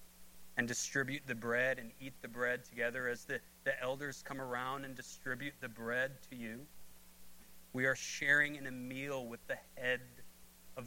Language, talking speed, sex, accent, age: English, 170 wpm, male, American, 40-59